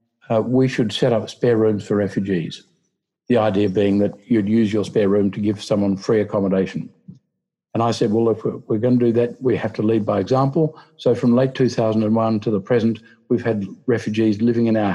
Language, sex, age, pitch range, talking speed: English, male, 50-69, 110-145 Hz, 210 wpm